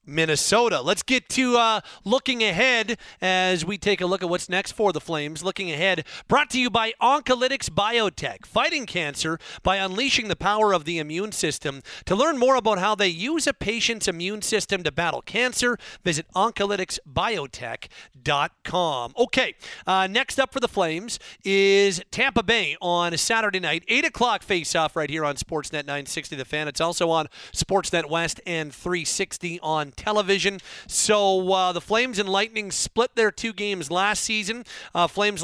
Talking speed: 170 wpm